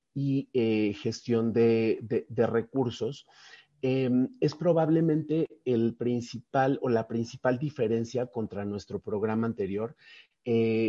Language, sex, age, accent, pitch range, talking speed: Spanish, male, 40-59, Mexican, 110-125 Hz, 110 wpm